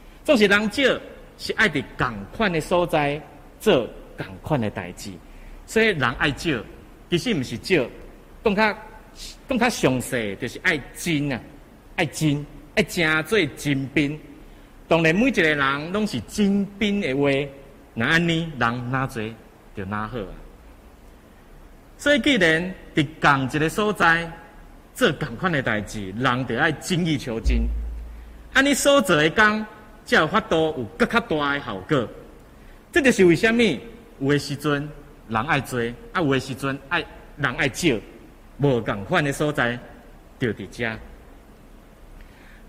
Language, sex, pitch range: Chinese, male, 120-180 Hz